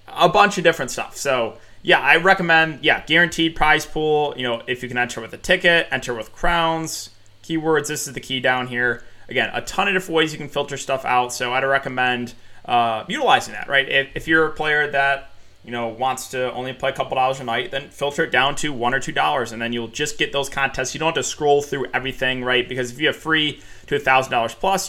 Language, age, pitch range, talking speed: English, 20-39, 120-150 Hz, 245 wpm